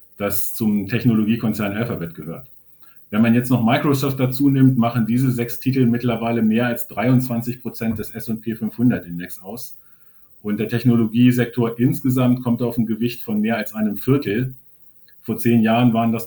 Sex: male